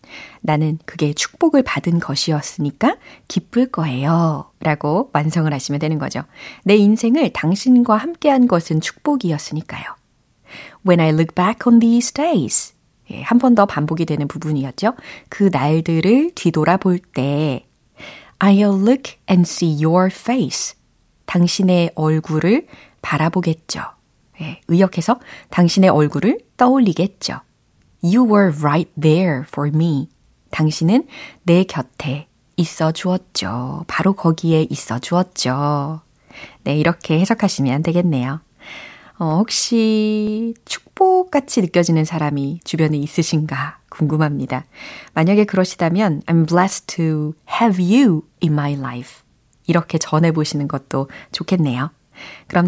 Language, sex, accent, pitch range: Korean, female, native, 150-200 Hz